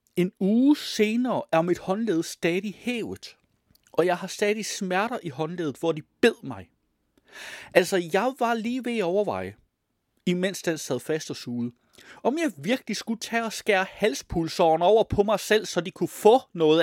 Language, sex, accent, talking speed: Danish, male, native, 170 wpm